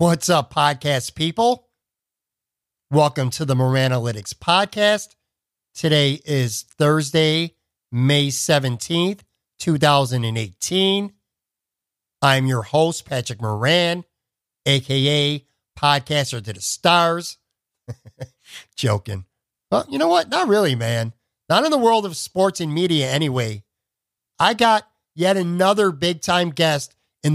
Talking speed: 110 wpm